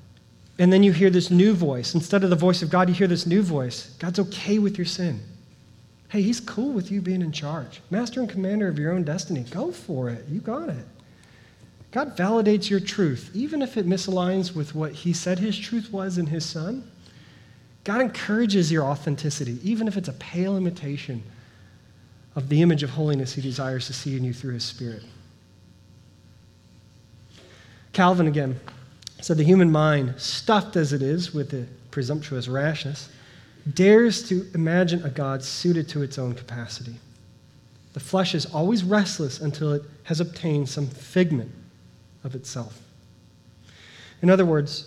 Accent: American